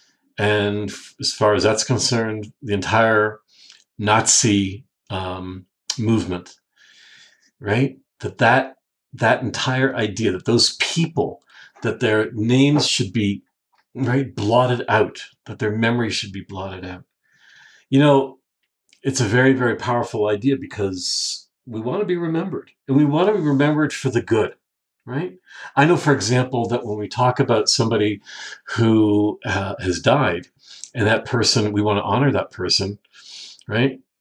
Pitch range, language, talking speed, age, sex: 110-140 Hz, English, 145 wpm, 50-69, male